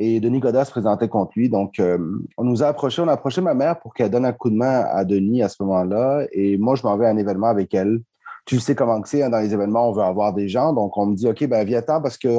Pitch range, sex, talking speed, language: 115-150 Hz, male, 310 wpm, English